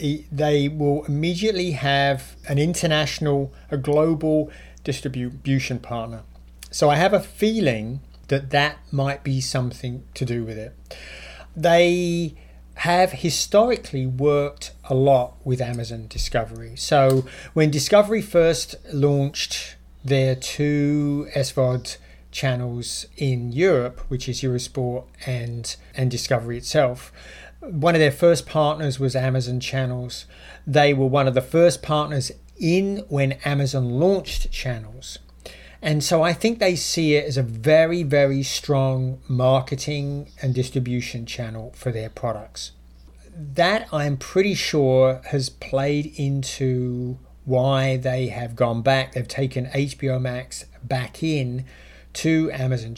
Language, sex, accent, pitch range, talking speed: English, male, British, 125-150 Hz, 125 wpm